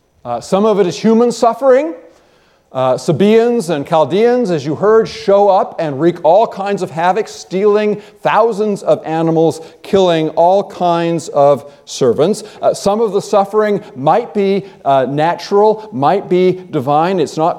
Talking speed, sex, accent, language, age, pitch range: 155 wpm, male, American, English, 50-69, 155-225 Hz